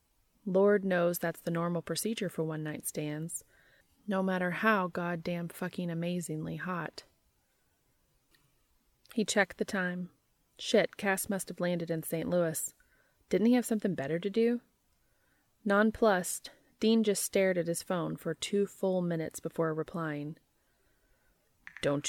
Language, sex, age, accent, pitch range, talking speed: English, female, 30-49, American, 165-215 Hz, 135 wpm